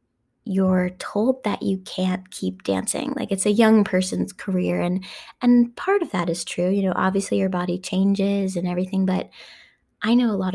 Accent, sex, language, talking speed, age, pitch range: American, female, English, 190 wpm, 10-29, 180-240 Hz